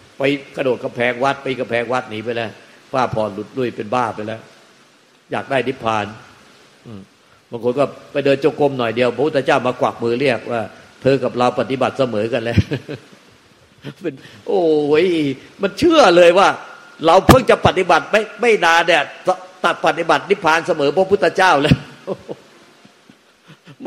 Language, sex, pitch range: Thai, male, 130-180 Hz